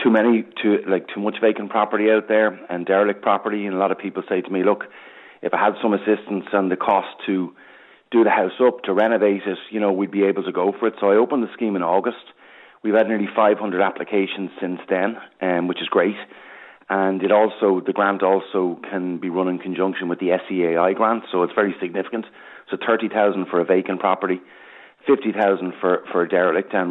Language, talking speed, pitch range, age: English, 220 wpm, 90-105 Hz, 30-49